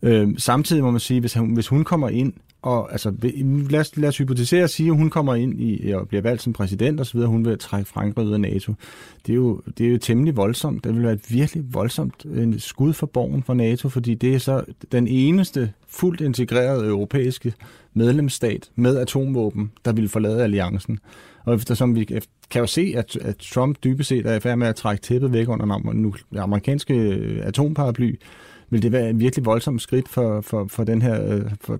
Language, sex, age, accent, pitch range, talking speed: Danish, male, 30-49, native, 110-130 Hz, 200 wpm